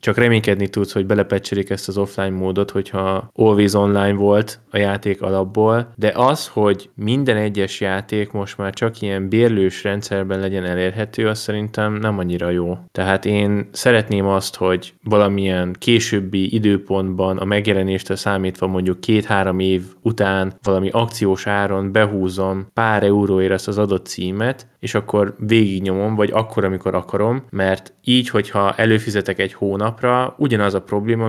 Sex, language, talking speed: male, Hungarian, 145 wpm